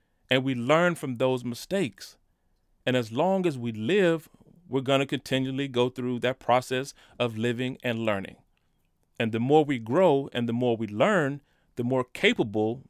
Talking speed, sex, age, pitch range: 165 wpm, male, 30-49, 115-150 Hz